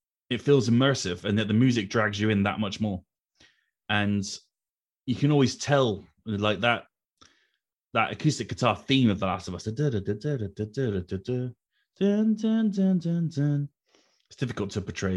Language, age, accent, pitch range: English, 30-49, British, 100-125 Hz